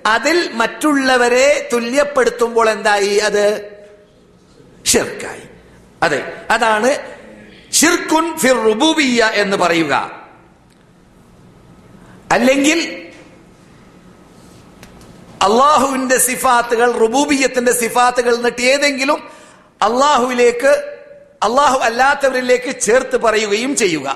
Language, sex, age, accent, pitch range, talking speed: Malayalam, male, 50-69, native, 215-255 Hz, 60 wpm